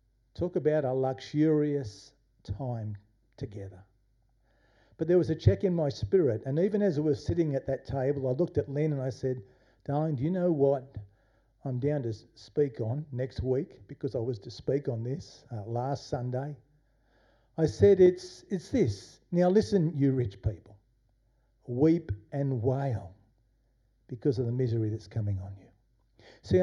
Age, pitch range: 50-69, 115-145 Hz